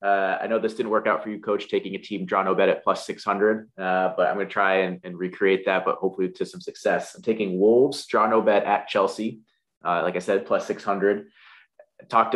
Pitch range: 95-105 Hz